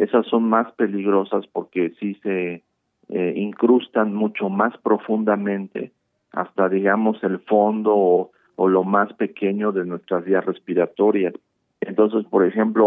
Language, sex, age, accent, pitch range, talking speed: Spanish, male, 50-69, Mexican, 95-110 Hz, 130 wpm